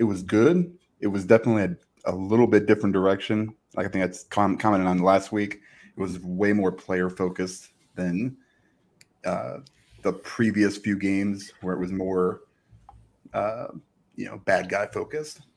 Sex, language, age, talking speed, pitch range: male, English, 30-49, 160 wpm, 95-125 Hz